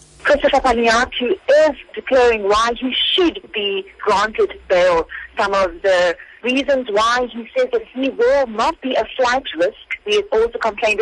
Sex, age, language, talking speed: female, 30-49, English, 160 wpm